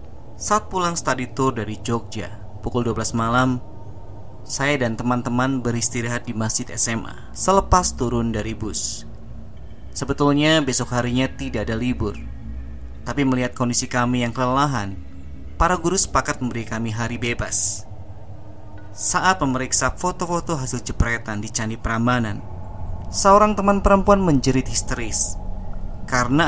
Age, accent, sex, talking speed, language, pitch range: 20-39, native, male, 120 wpm, Indonesian, 105-130 Hz